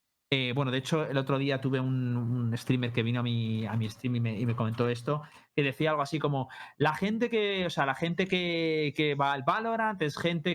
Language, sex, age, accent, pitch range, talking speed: Spanish, male, 30-49, Spanish, 130-160 Hz, 245 wpm